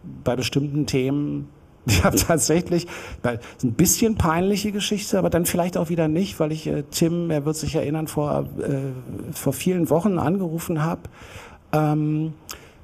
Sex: male